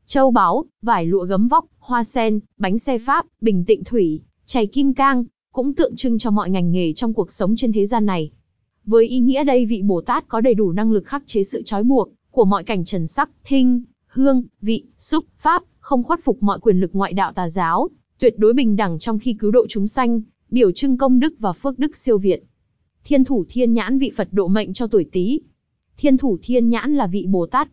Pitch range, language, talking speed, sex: 205-255 Hz, Vietnamese, 230 wpm, female